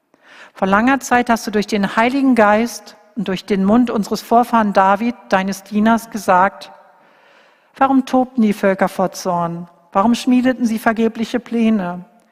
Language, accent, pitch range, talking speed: German, German, 210-265 Hz, 145 wpm